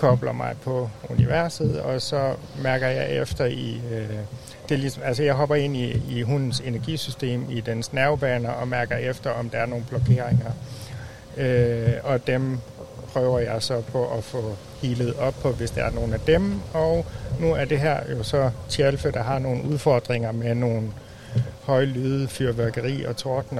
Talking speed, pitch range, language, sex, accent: 175 wpm, 120-140 Hz, Danish, male, native